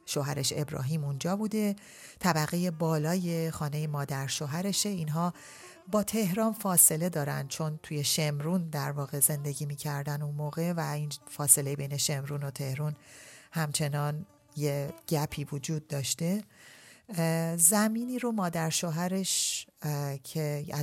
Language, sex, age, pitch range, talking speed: Persian, female, 30-49, 145-180 Hz, 115 wpm